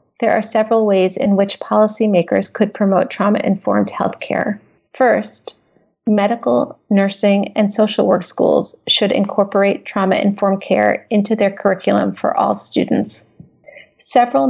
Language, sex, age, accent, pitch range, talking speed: English, female, 30-49, American, 200-220 Hz, 125 wpm